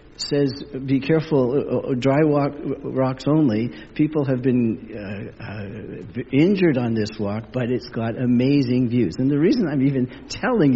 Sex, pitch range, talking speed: male, 125-155 Hz, 150 wpm